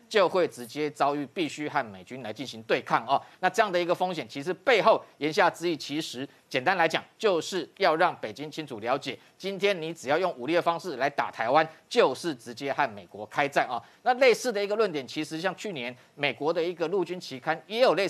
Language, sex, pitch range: Chinese, male, 145-185 Hz